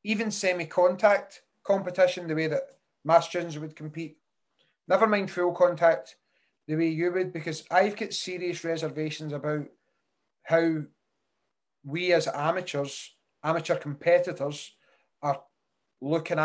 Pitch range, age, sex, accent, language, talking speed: 160-180 Hz, 30-49, male, British, English, 115 wpm